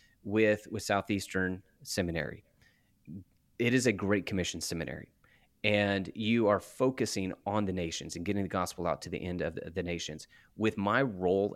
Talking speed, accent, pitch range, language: 170 wpm, American, 90-105 Hz, English